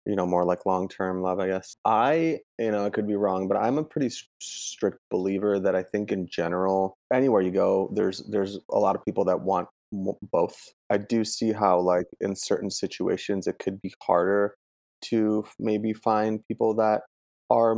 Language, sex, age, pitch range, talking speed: English, male, 30-49, 90-105 Hz, 190 wpm